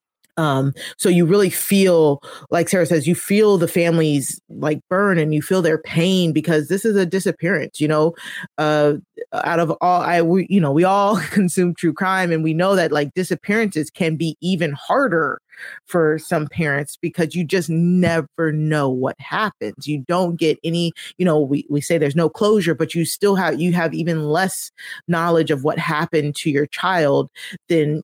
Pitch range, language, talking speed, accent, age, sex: 150-185 Hz, English, 185 wpm, American, 30-49, female